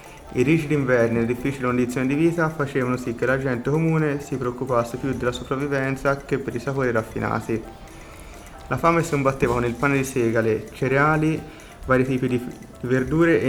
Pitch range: 115-145 Hz